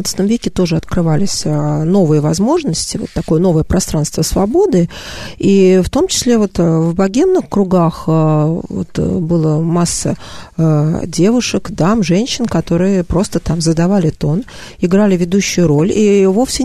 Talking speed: 125 wpm